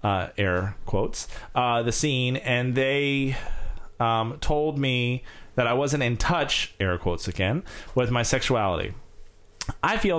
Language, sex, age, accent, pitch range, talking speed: English, male, 30-49, American, 100-130 Hz, 140 wpm